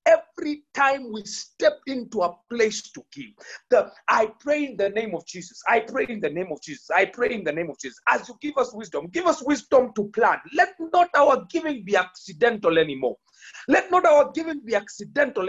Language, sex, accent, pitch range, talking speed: English, male, South African, 200-290 Hz, 205 wpm